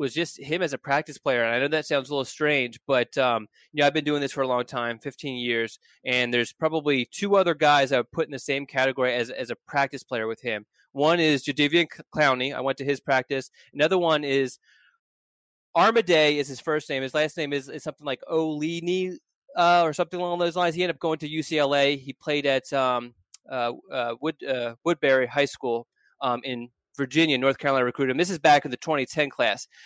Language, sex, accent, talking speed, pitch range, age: English, male, American, 225 wpm, 135-160 Hz, 20-39